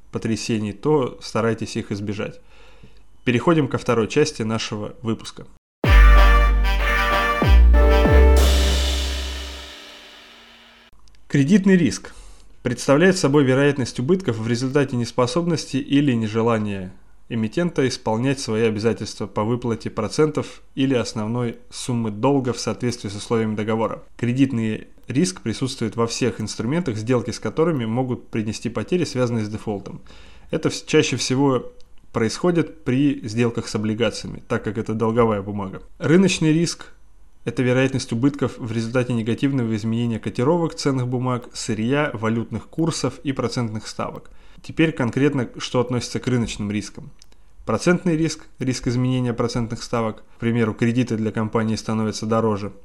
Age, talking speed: 20-39, 120 wpm